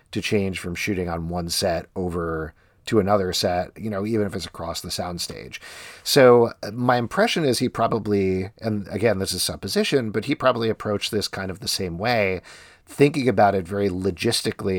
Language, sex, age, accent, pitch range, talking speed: English, male, 40-59, American, 95-115 Hz, 185 wpm